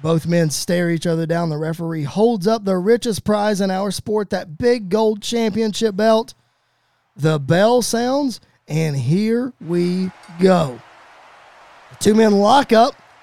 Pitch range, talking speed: 175-250 Hz, 145 wpm